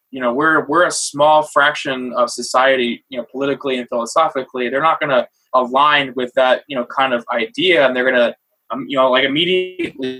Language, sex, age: English, male, 20-39